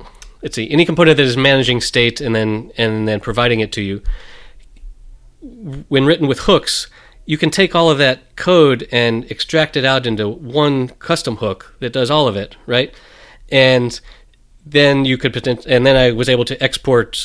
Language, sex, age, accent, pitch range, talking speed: English, male, 30-49, American, 110-135 Hz, 185 wpm